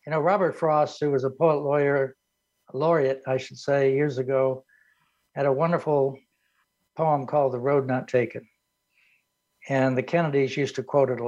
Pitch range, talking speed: 130-160 Hz, 175 wpm